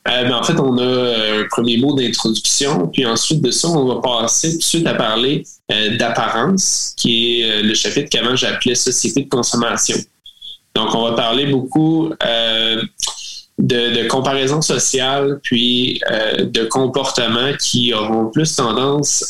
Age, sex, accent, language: 20-39, male, Canadian, French